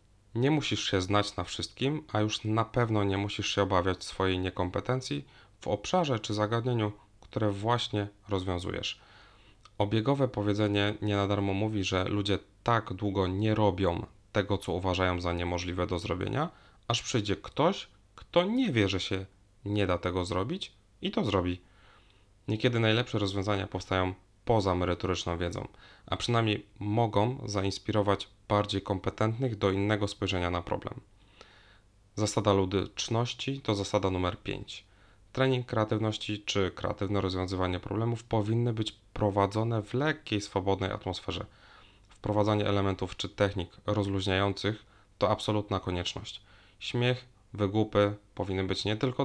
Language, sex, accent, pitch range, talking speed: Polish, male, native, 95-110 Hz, 130 wpm